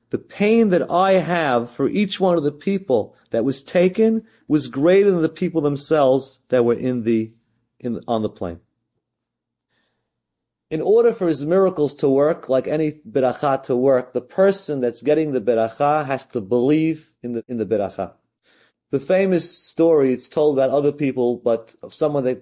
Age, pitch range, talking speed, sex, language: 30-49, 110-145 Hz, 175 wpm, male, English